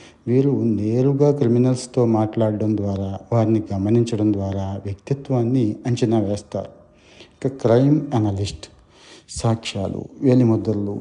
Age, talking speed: 60-79, 85 wpm